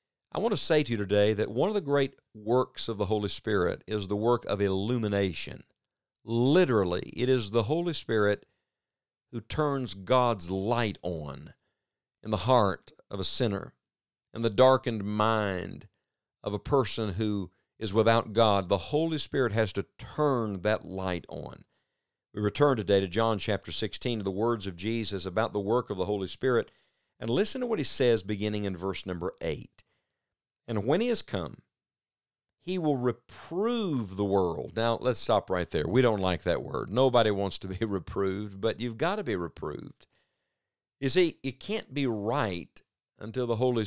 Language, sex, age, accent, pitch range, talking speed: English, male, 50-69, American, 105-130 Hz, 175 wpm